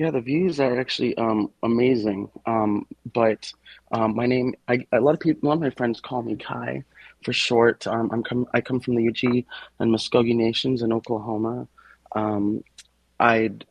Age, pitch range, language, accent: 30-49, 105-115 Hz, English, American